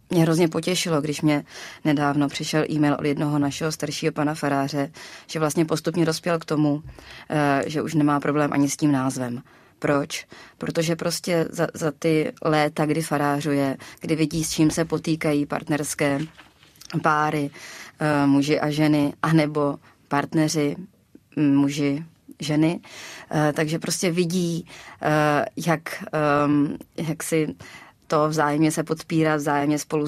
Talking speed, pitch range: 130 wpm, 145-160 Hz